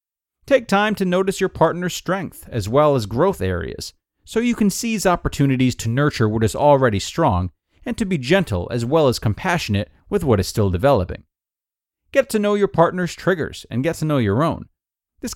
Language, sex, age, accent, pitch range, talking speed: English, male, 30-49, American, 105-170 Hz, 190 wpm